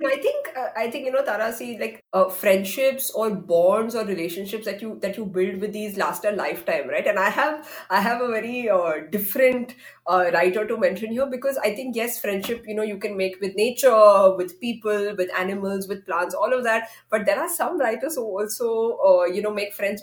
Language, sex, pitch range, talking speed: English, female, 195-260 Hz, 220 wpm